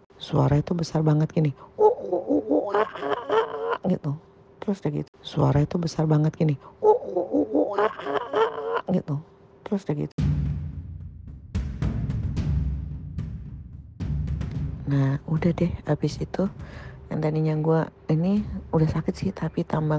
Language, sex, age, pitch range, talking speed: Indonesian, female, 40-59, 150-200 Hz, 95 wpm